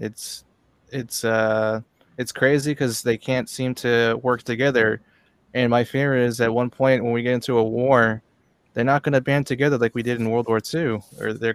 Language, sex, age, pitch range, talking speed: English, male, 20-39, 110-125 Hz, 205 wpm